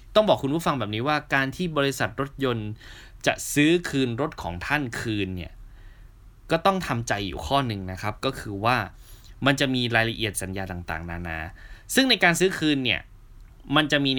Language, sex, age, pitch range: Thai, male, 20-39, 105-140 Hz